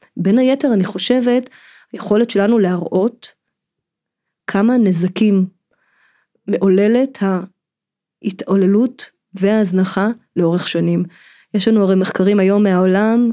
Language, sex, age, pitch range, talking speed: Hebrew, female, 20-39, 190-220 Hz, 90 wpm